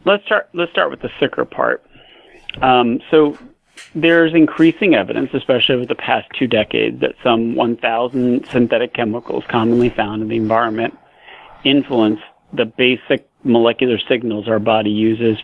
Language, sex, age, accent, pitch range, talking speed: English, male, 40-59, American, 110-130 Hz, 145 wpm